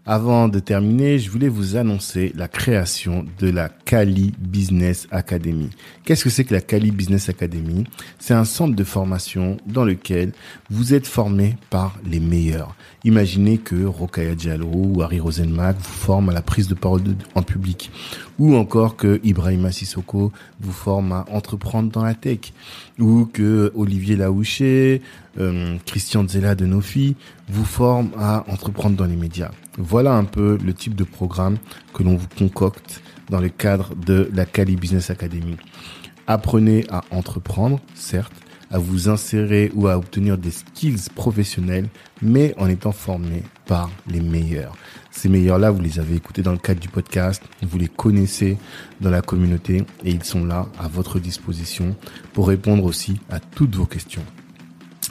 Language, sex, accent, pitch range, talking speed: French, male, French, 90-105 Hz, 165 wpm